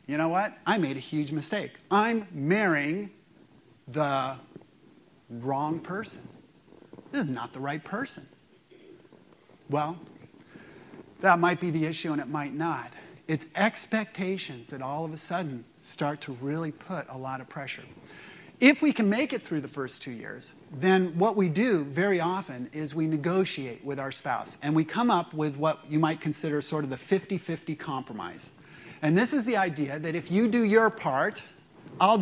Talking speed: 170 wpm